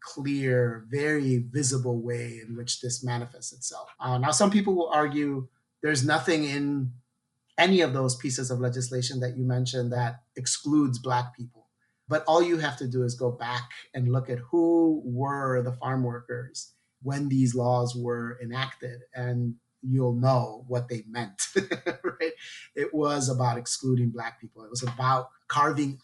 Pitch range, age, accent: 125-145 Hz, 30-49, American